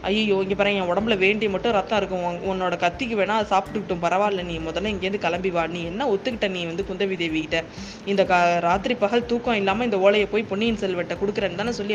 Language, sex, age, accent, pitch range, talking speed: Tamil, female, 20-39, native, 180-235 Hz, 195 wpm